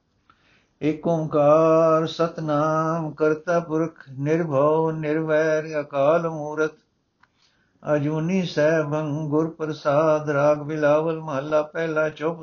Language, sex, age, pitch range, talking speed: Punjabi, male, 60-79, 145-185 Hz, 85 wpm